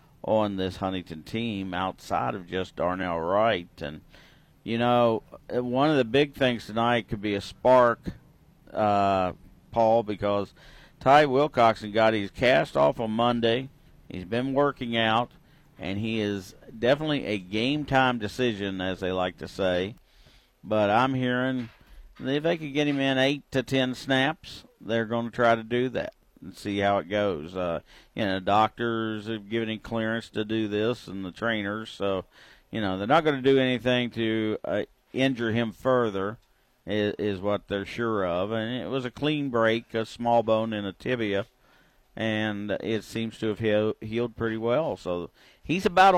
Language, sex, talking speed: English, male, 170 wpm